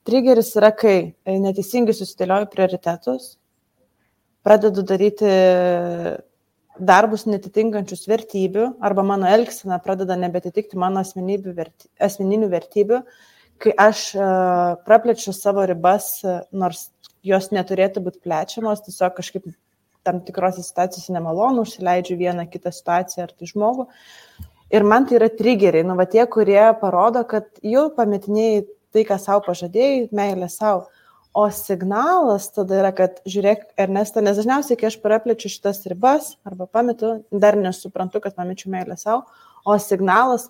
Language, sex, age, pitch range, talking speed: English, female, 20-39, 185-220 Hz, 125 wpm